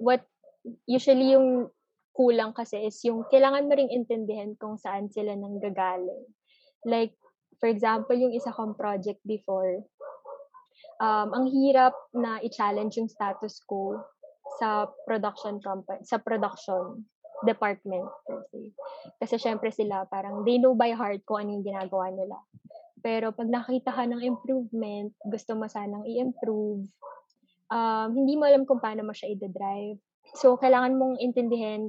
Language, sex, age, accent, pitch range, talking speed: Filipino, female, 20-39, native, 210-250 Hz, 135 wpm